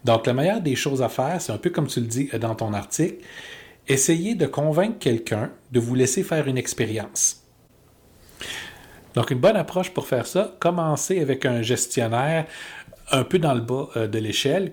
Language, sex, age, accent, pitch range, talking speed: French, male, 40-59, Canadian, 110-140 Hz, 185 wpm